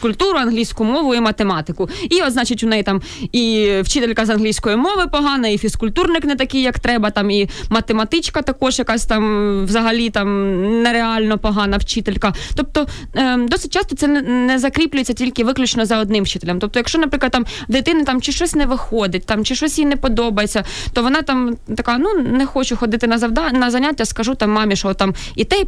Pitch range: 215-260 Hz